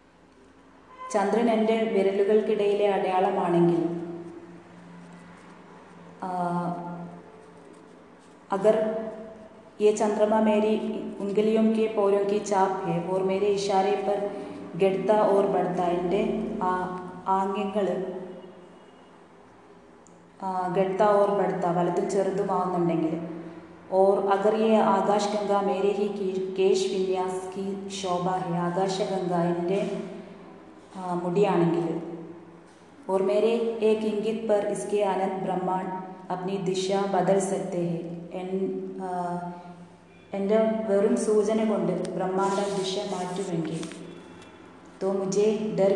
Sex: female